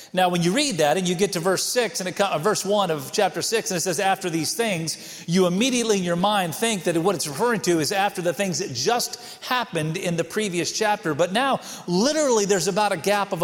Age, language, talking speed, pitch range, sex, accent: 40-59, English, 245 wpm, 175-215 Hz, male, American